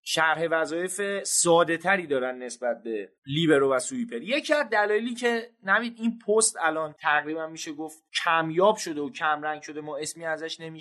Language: Persian